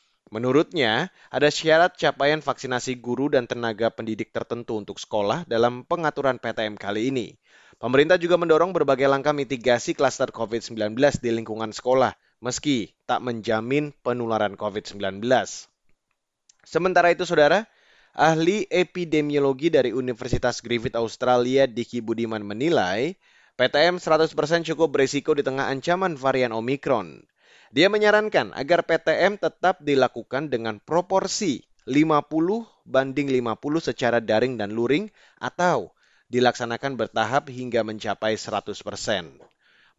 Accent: native